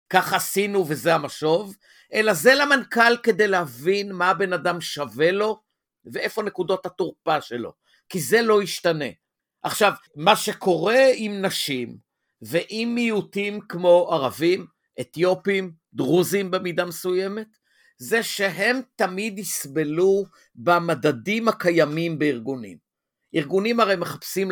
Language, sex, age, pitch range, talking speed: Hebrew, male, 50-69, 170-215 Hz, 110 wpm